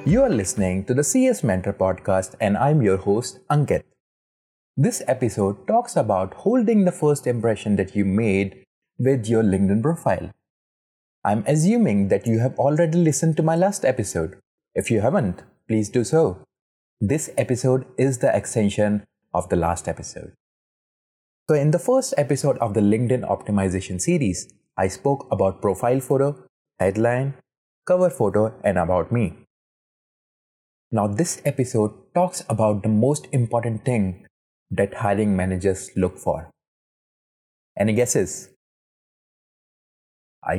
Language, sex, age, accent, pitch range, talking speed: English, male, 30-49, Indian, 100-140 Hz, 135 wpm